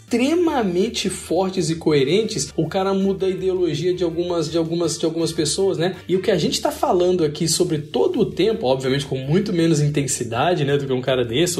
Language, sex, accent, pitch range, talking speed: Portuguese, male, Brazilian, 150-200 Hz, 205 wpm